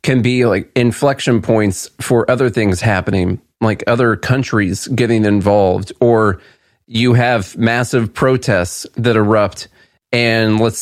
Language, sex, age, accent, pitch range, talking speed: English, male, 30-49, American, 100-125 Hz, 130 wpm